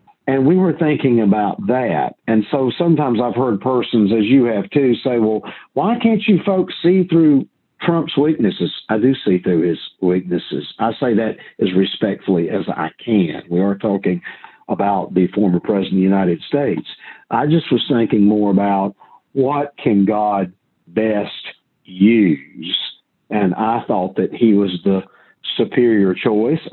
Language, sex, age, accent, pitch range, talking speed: English, male, 50-69, American, 105-150 Hz, 160 wpm